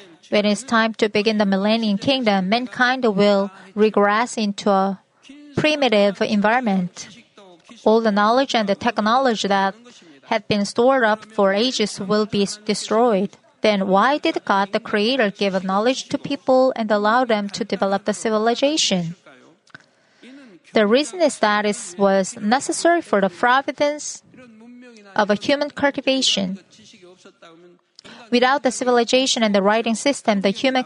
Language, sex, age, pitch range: Korean, female, 30-49, 205-250 Hz